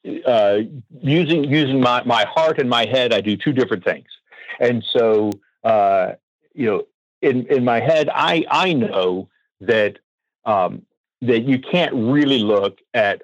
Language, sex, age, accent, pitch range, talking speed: English, male, 50-69, American, 105-130 Hz, 155 wpm